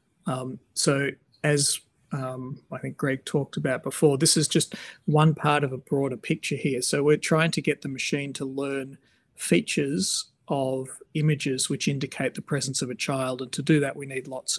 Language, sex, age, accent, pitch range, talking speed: English, male, 40-59, Australian, 135-155 Hz, 190 wpm